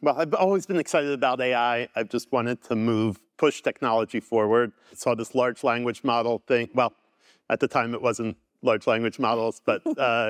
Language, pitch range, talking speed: English, 115-135 Hz, 190 wpm